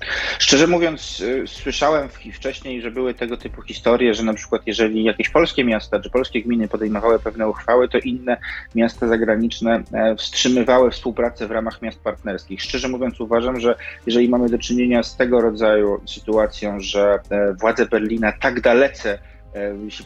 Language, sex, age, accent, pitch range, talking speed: Polish, male, 30-49, native, 105-120 Hz, 150 wpm